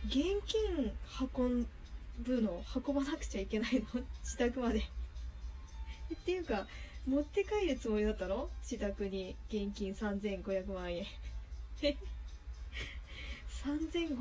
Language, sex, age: Japanese, female, 20-39